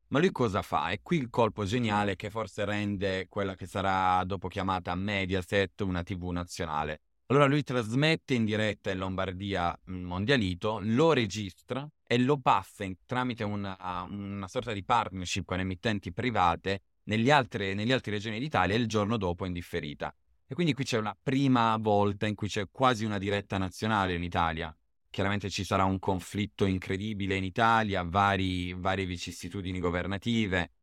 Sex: male